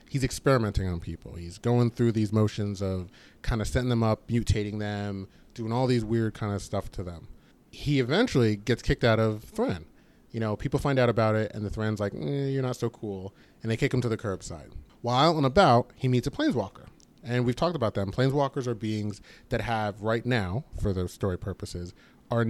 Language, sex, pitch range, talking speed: English, male, 100-125 Hz, 215 wpm